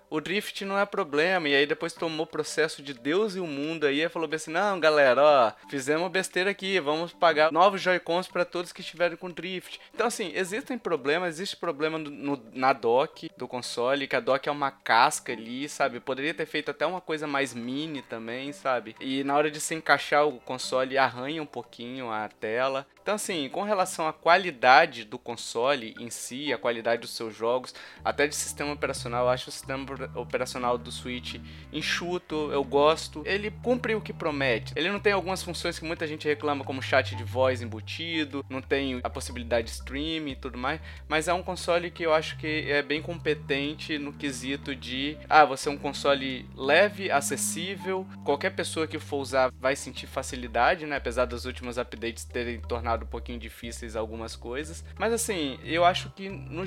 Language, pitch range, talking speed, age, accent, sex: Portuguese, 130-170 Hz, 195 wpm, 20-39, Brazilian, male